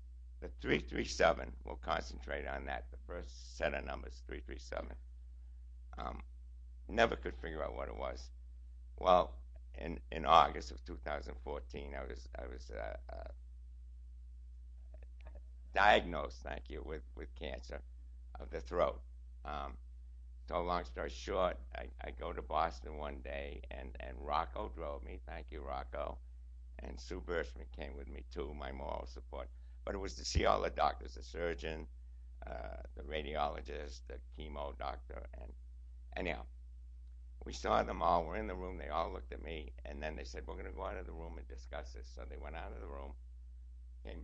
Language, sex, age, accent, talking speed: English, male, 60-79, American, 170 wpm